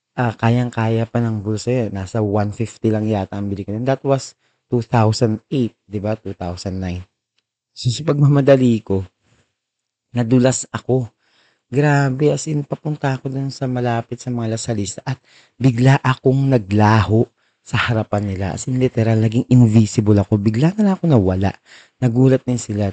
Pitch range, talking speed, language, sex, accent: 105-130 Hz, 150 wpm, Filipino, male, native